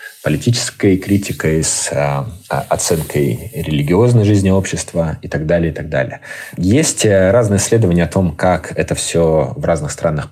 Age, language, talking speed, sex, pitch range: 20-39, Russian, 145 wpm, male, 80-100 Hz